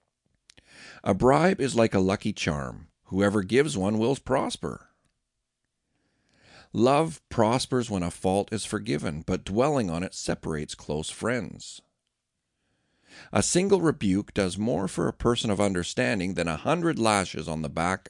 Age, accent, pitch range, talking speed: 50-69, American, 85-115 Hz, 145 wpm